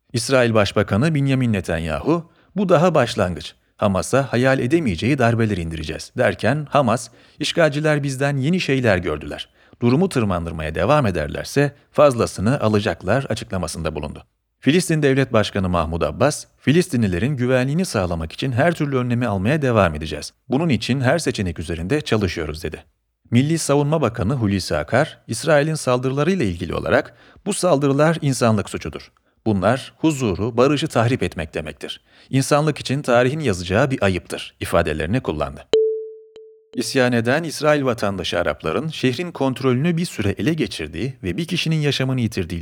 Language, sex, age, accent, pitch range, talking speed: Turkish, male, 40-59, native, 95-145 Hz, 130 wpm